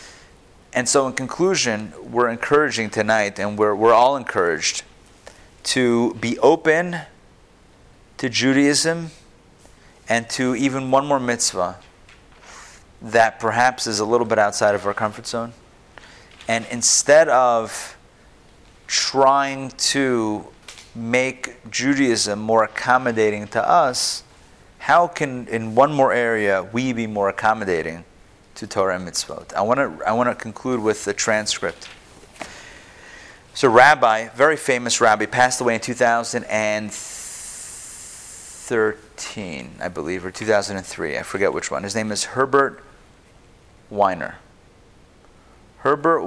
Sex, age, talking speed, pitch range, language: male, 30-49, 115 wpm, 105-125 Hz, English